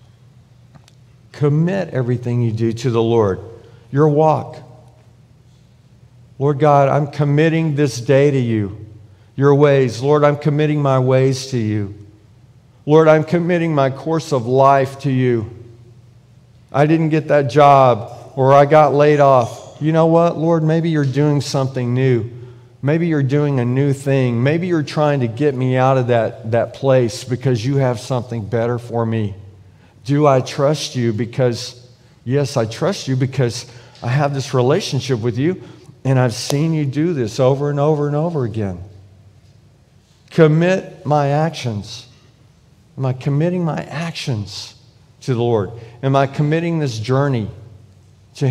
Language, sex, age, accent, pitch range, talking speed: English, male, 50-69, American, 120-145 Hz, 150 wpm